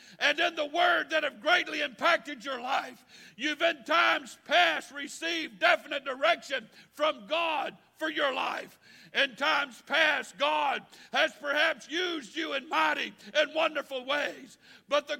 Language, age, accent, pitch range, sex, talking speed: English, 60-79, American, 275-320 Hz, male, 145 wpm